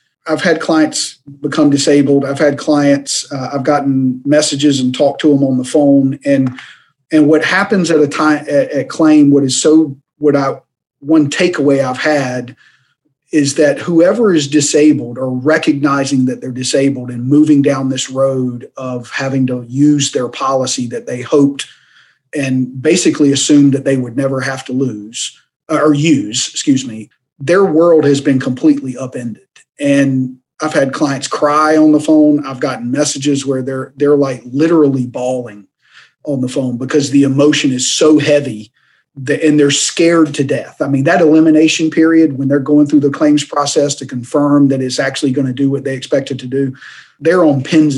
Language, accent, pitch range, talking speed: English, American, 135-150 Hz, 180 wpm